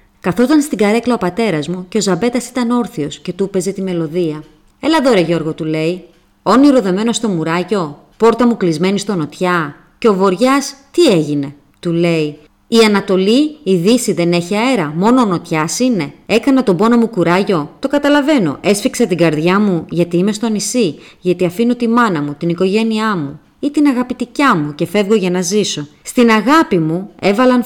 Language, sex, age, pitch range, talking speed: Greek, female, 30-49, 160-230 Hz, 180 wpm